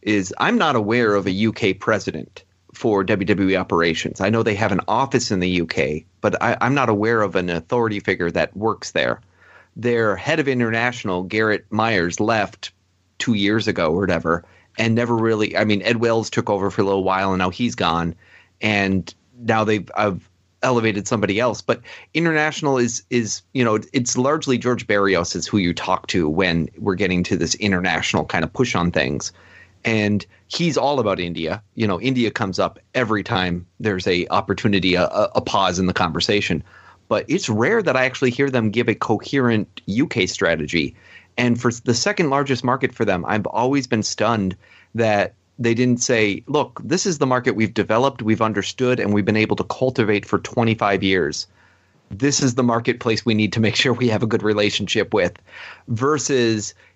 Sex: male